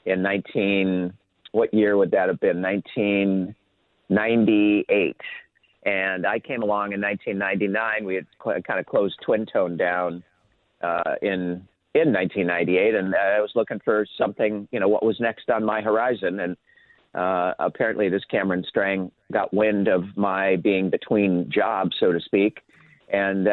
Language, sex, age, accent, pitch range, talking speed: English, male, 40-59, American, 95-110 Hz, 145 wpm